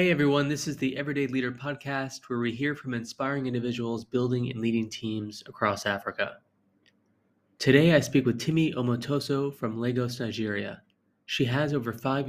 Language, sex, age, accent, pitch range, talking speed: English, male, 20-39, American, 120-135 Hz, 160 wpm